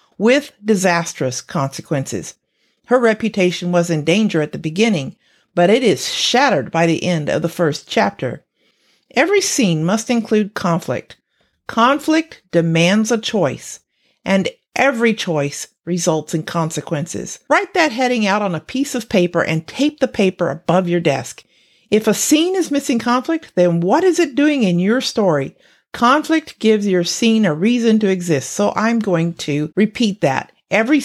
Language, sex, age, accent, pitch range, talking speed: English, female, 50-69, American, 175-245 Hz, 160 wpm